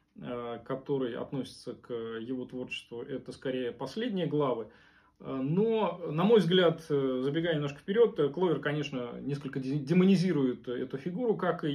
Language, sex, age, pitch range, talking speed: Russian, male, 20-39, 130-160 Hz, 125 wpm